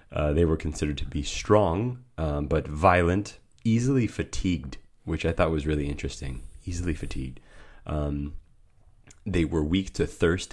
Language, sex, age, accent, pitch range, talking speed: English, male, 30-49, American, 70-85 Hz, 150 wpm